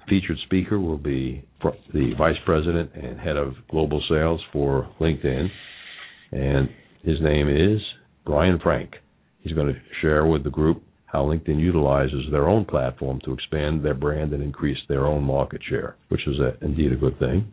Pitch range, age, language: 70-80 Hz, 60-79, English